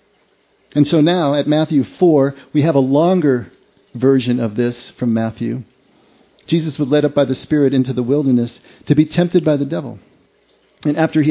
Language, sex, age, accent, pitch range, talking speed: English, male, 50-69, American, 120-155 Hz, 180 wpm